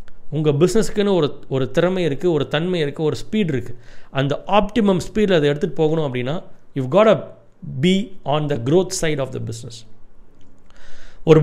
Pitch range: 140-190 Hz